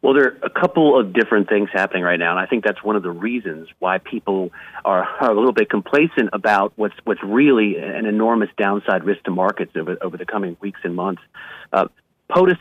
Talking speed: 215 wpm